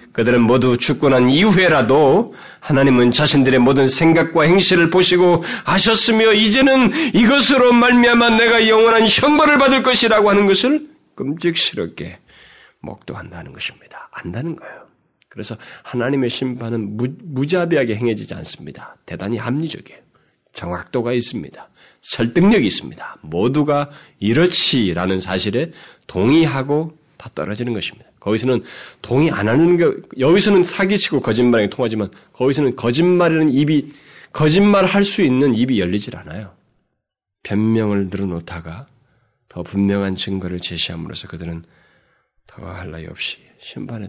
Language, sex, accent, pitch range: Korean, male, native, 100-165 Hz